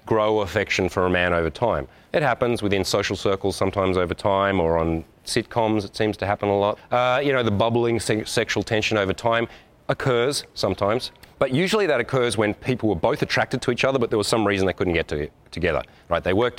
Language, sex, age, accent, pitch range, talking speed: English, male, 30-49, Australian, 95-115 Hz, 215 wpm